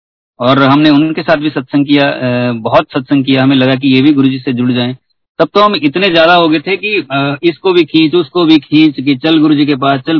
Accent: native